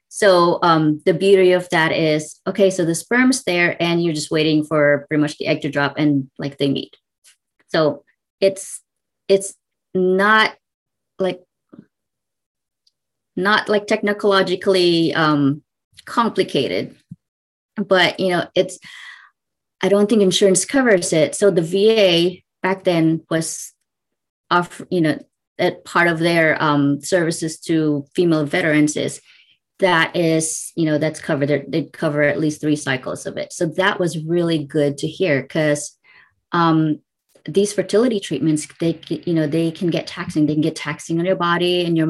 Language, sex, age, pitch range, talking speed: English, female, 30-49, 155-190 Hz, 155 wpm